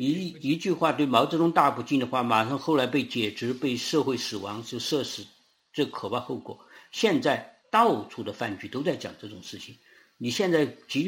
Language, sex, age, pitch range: Chinese, male, 50-69, 115-165 Hz